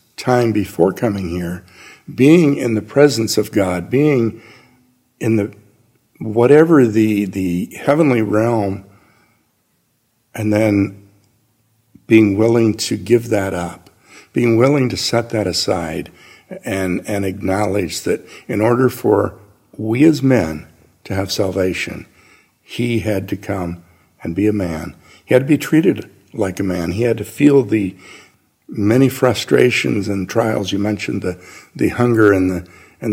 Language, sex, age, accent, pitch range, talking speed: English, male, 60-79, American, 95-120 Hz, 140 wpm